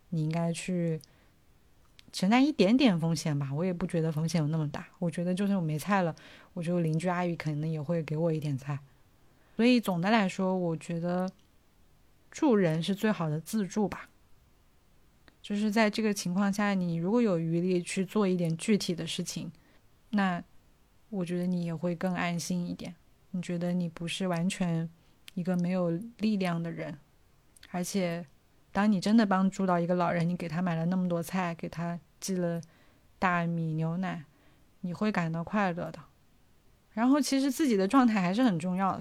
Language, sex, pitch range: Chinese, female, 165-195 Hz